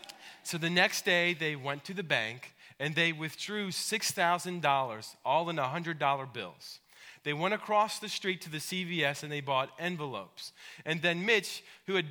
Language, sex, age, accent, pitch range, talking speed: English, male, 30-49, American, 140-185 Hz, 170 wpm